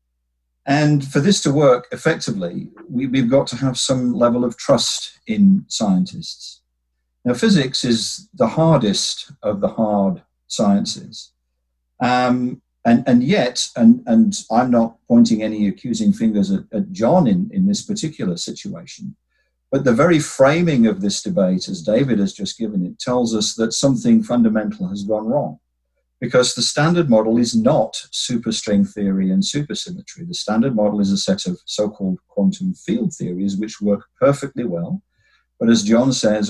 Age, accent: 50-69, British